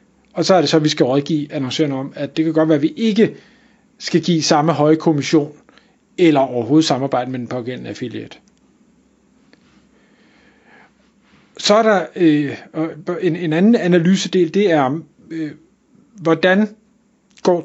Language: Danish